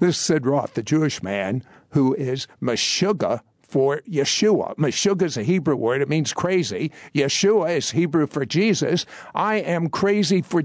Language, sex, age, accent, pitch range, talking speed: English, male, 60-79, American, 140-185 Hz, 165 wpm